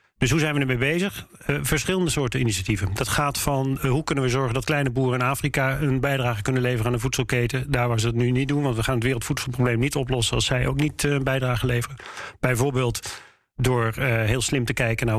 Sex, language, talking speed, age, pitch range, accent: male, Dutch, 220 wpm, 40-59, 120-145 Hz, Dutch